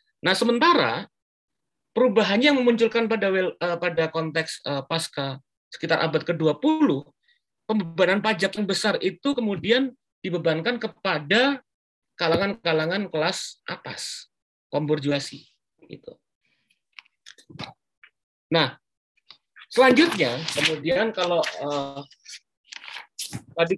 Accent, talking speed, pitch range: native, 85 wpm, 145-200 Hz